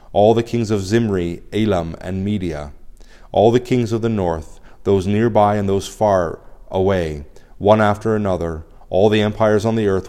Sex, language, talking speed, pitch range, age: male, English, 170 wpm, 95-110 Hz, 30-49